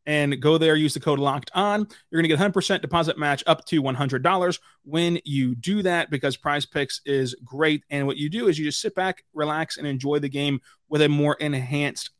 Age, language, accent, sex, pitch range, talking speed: 30-49, English, American, male, 140-165 Hz, 220 wpm